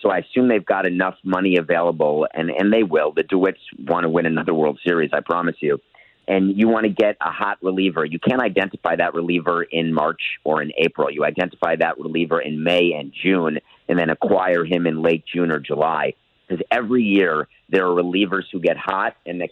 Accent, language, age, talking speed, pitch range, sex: American, English, 40-59, 210 wpm, 85-95 Hz, male